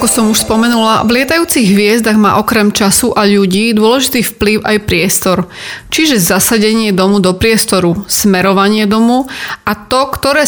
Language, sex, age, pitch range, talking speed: Slovak, female, 30-49, 195-225 Hz, 150 wpm